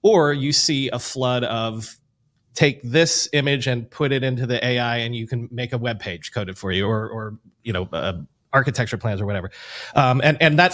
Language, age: English, 30-49